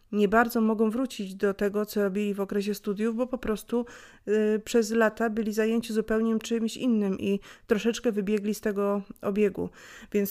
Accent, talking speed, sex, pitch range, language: native, 165 wpm, female, 200-225 Hz, Polish